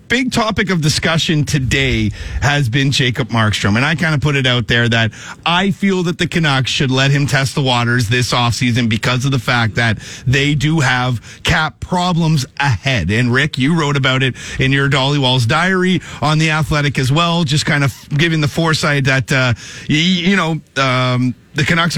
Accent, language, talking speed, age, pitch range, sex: American, English, 195 wpm, 40-59, 135-170 Hz, male